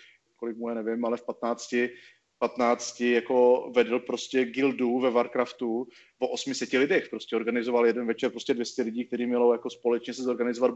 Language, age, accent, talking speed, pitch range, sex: Czech, 30-49, native, 165 wpm, 115-125 Hz, male